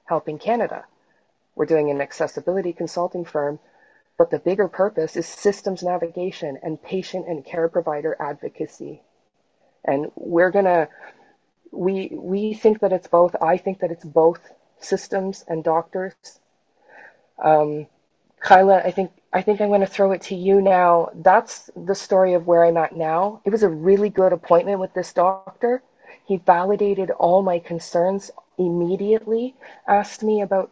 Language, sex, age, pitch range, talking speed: English, female, 30-49, 165-195 Hz, 150 wpm